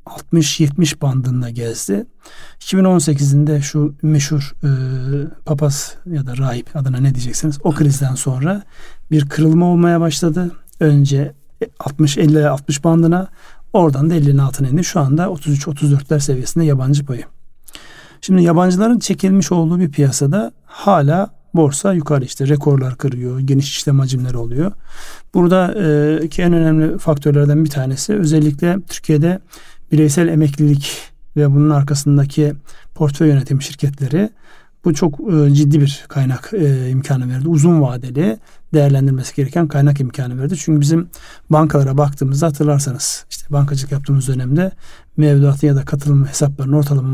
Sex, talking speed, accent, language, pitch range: male, 125 wpm, native, Turkish, 140-165 Hz